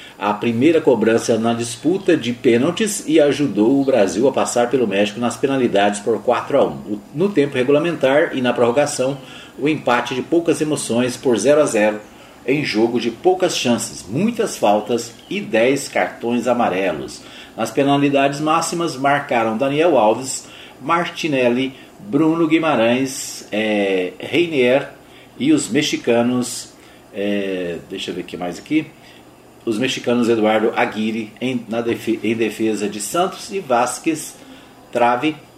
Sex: male